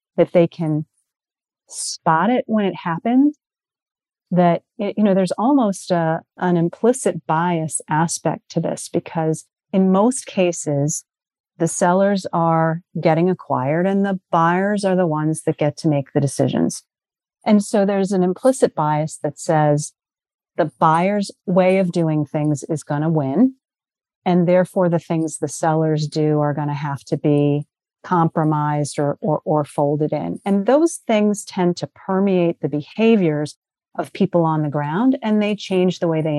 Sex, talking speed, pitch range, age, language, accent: female, 160 wpm, 155-190 Hz, 40-59, English, American